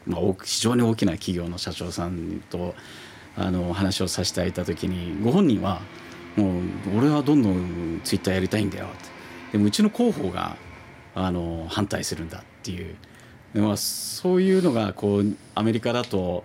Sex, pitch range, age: male, 90-110 Hz, 40-59